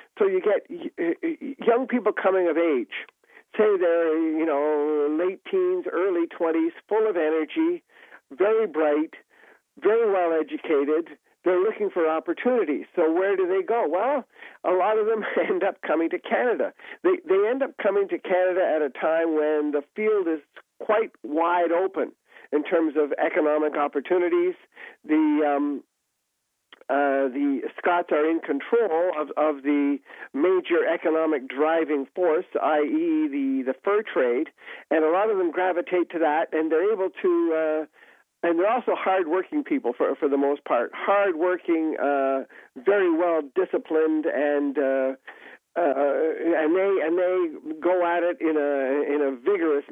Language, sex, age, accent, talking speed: English, male, 50-69, American, 160 wpm